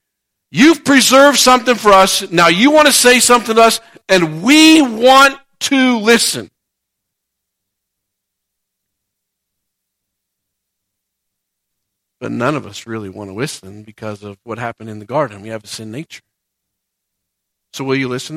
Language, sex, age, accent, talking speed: English, male, 50-69, American, 135 wpm